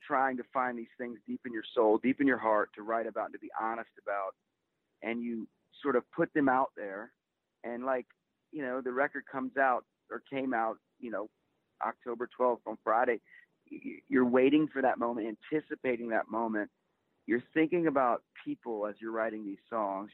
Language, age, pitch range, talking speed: English, 40-59, 110-135 Hz, 185 wpm